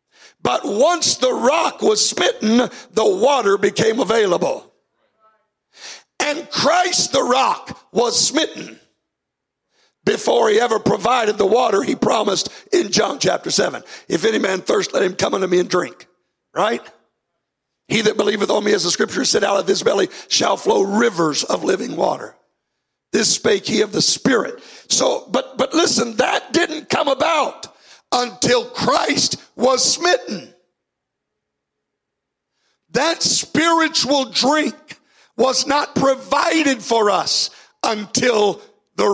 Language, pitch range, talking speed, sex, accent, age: English, 205-290 Hz, 135 wpm, male, American, 60-79